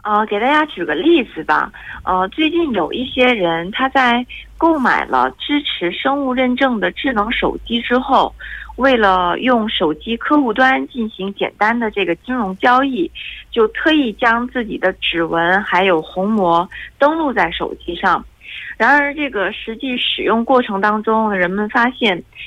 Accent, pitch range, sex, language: Chinese, 195-265 Hz, female, Korean